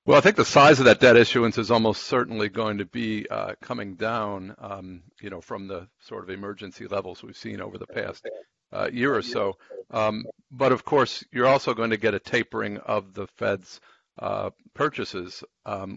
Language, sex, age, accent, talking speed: English, male, 50-69, American, 200 wpm